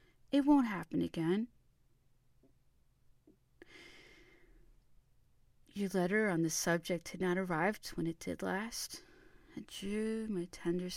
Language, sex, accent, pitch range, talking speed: English, female, American, 160-210 Hz, 105 wpm